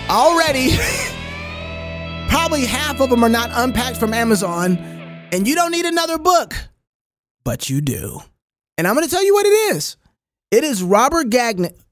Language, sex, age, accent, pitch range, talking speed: English, male, 20-39, American, 140-190 Hz, 160 wpm